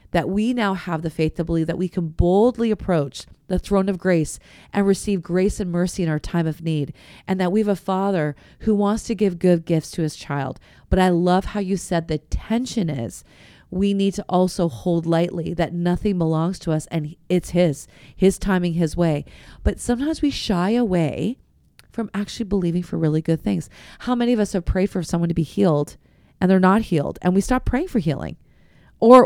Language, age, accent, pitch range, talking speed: English, 30-49, American, 165-200 Hz, 210 wpm